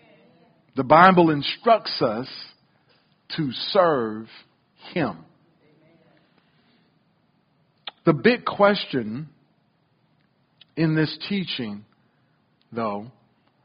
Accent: American